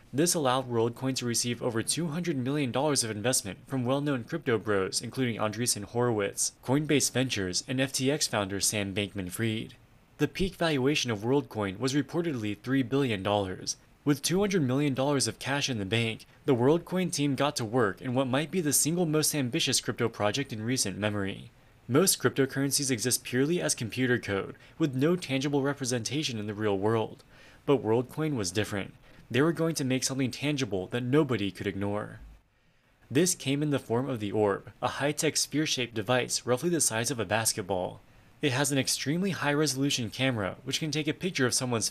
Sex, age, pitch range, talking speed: male, 20-39, 110-145 Hz, 175 wpm